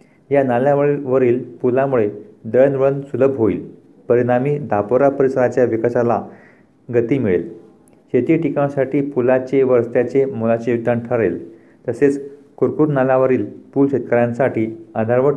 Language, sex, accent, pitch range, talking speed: Marathi, male, native, 110-130 Hz, 100 wpm